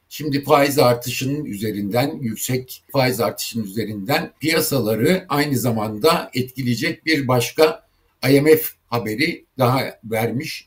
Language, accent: Turkish, native